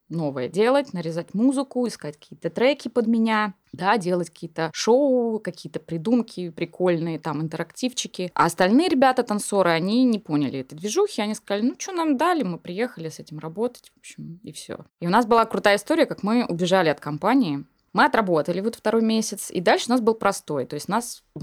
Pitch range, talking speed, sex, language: 170-255 Hz, 185 wpm, female, Russian